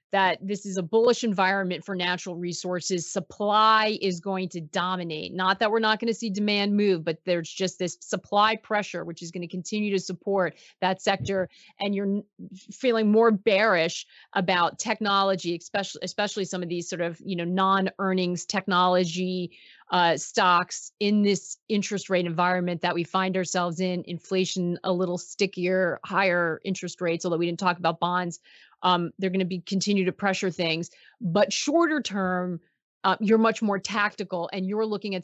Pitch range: 180-205 Hz